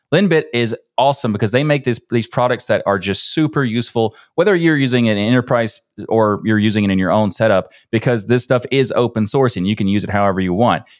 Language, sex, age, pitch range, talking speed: English, male, 20-39, 100-125 Hz, 225 wpm